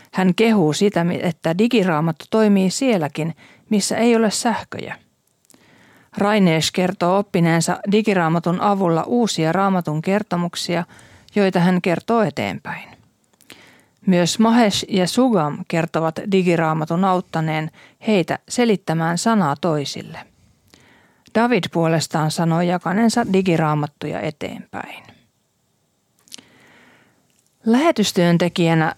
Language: Finnish